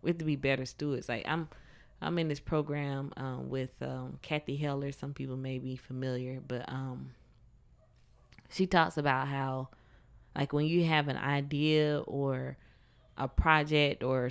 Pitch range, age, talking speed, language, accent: 130-150 Hz, 20-39, 160 wpm, English, American